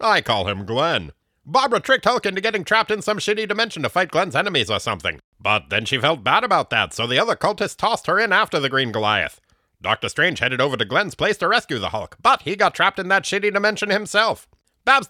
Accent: American